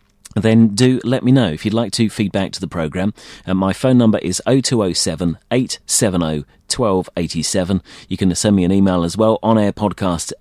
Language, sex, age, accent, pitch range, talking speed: English, male, 30-49, British, 90-115 Hz, 180 wpm